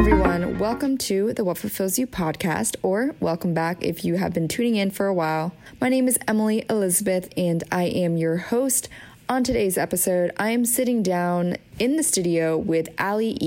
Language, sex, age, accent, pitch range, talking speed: English, female, 20-39, American, 165-205 Hz, 185 wpm